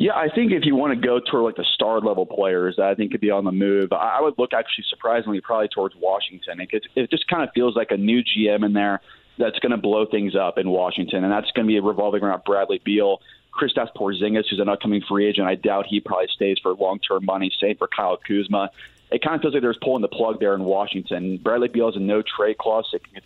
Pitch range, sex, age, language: 100-115 Hz, male, 30-49, English